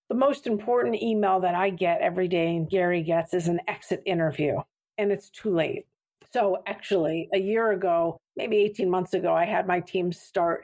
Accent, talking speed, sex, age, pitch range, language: American, 190 wpm, female, 50-69, 175-220 Hz, English